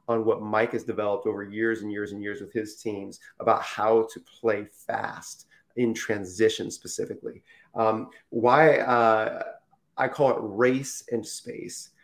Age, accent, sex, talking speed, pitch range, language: 30-49, American, male, 155 wpm, 110-125 Hz, English